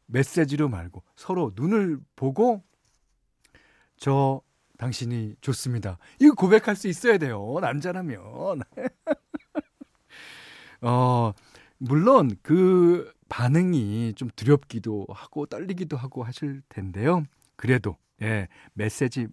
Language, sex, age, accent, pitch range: Korean, male, 40-59, native, 110-165 Hz